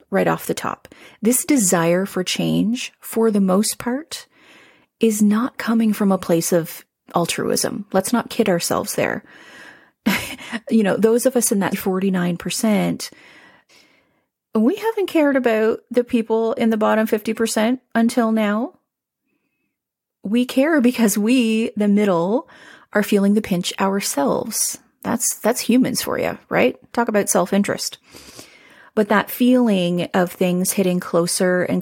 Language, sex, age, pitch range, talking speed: English, female, 30-49, 190-240 Hz, 140 wpm